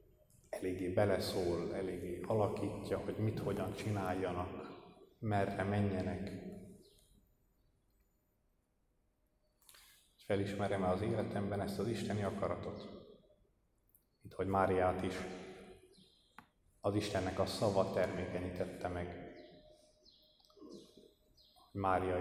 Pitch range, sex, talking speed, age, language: 90-105 Hz, male, 75 wpm, 30-49, Hungarian